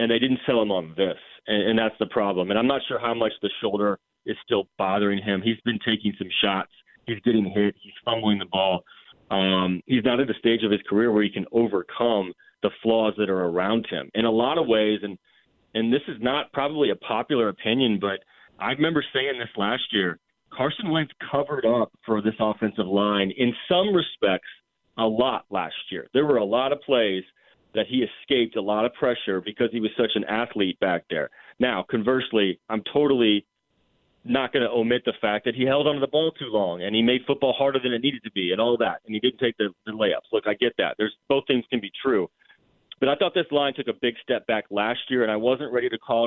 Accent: American